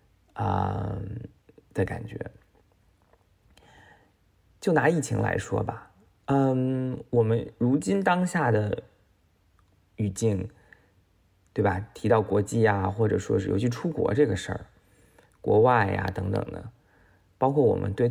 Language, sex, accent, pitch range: Chinese, male, native, 95-120 Hz